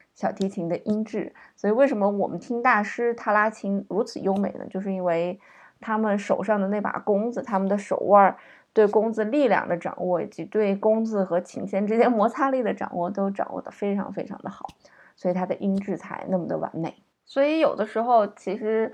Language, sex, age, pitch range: Chinese, female, 20-39, 185-235 Hz